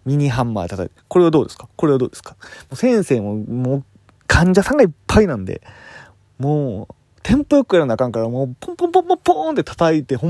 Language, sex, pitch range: Japanese, male, 110-170 Hz